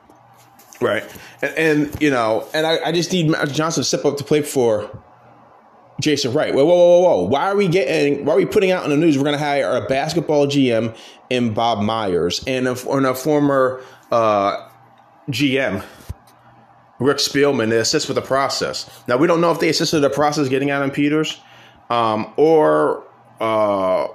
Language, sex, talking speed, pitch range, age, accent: English, male, 180 wpm, 130-180 Hz, 20-39, American